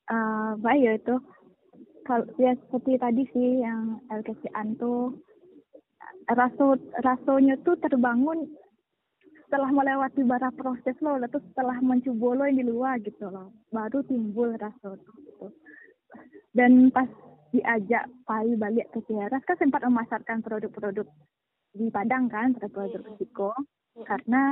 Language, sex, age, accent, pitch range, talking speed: Indonesian, female, 20-39, native, 210-260 Hz, 120 wpm